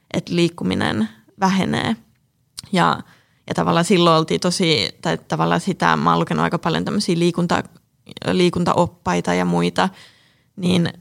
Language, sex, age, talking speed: Finnish, female, 20-39, 120 wpm